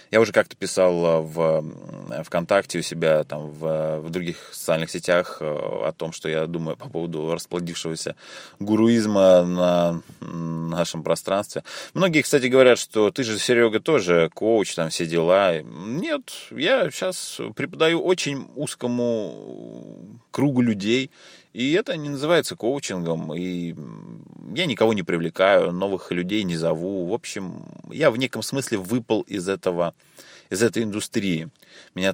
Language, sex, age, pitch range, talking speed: Russian, male, 20-39, 85-120 Hz, 135 wpm